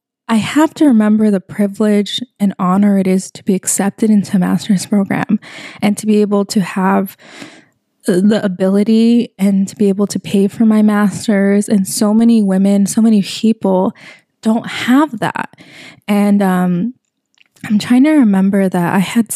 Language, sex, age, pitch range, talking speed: English, female, 20-39, 190-225 Hz, 165 wpm